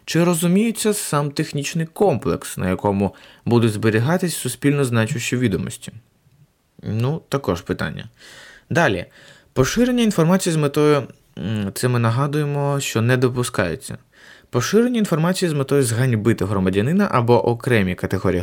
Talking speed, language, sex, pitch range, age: 115 wpm, Ukrainian, male, 110-155 Hz, 20-39